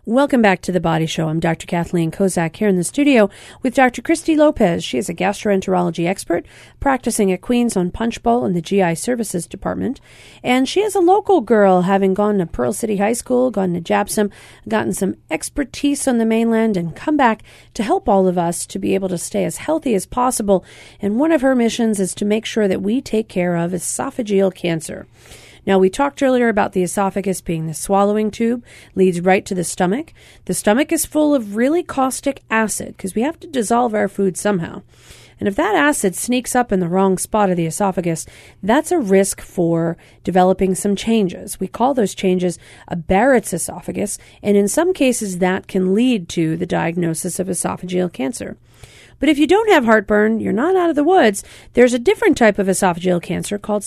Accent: American